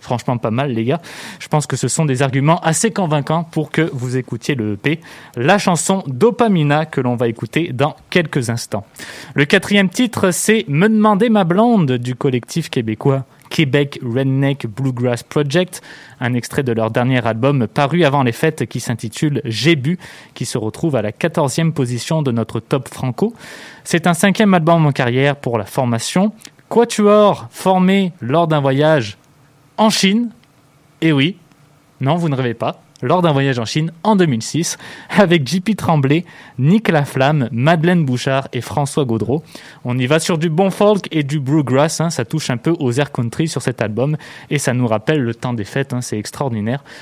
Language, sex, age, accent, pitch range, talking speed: French, male, 20-39, French, 125-170 Hz, 195 wpm